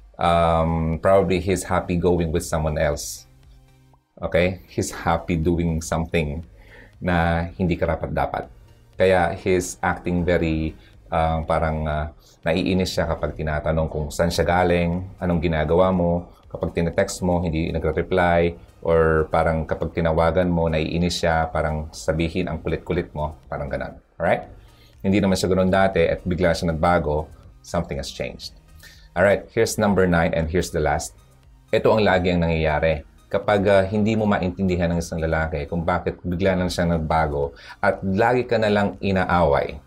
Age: 30-49